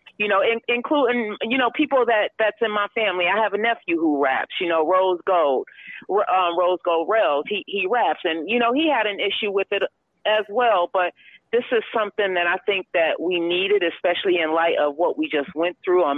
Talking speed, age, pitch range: 220 wpm, 40-59, 165-210 Hz